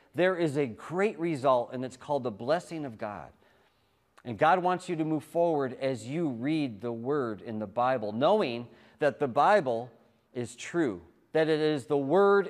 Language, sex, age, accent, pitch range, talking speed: English, male, 40-59, American, 120-160 Hz, 180 wpm